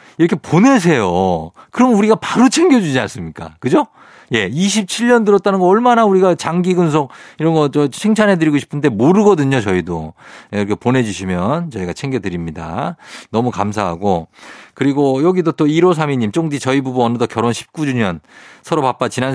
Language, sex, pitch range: Korean, male, 105-155 Hz